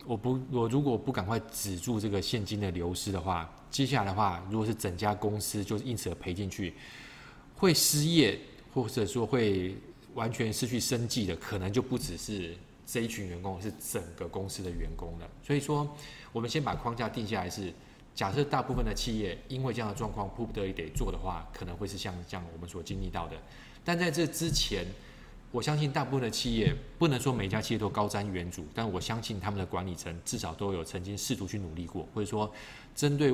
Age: 20-39